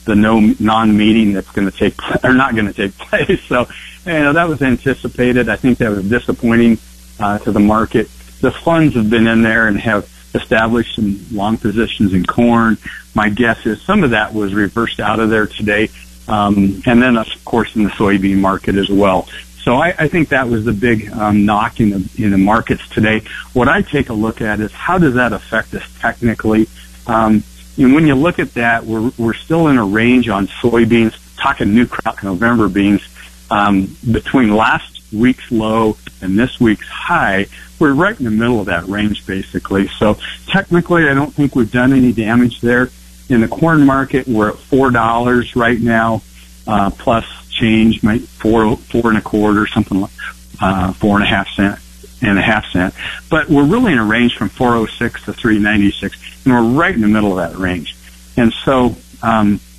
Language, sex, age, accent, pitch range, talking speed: English, male, 40-59, American, 100-120 Hz, 195 wpm